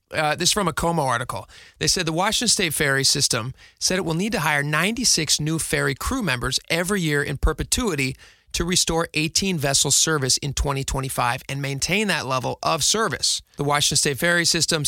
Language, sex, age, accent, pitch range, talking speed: English, male, 30-49, American, 140-170 Hz, 185 wpm